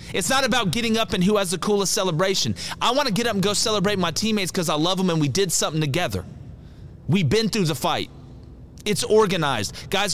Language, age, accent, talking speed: English, 30-49, American, 225 wpm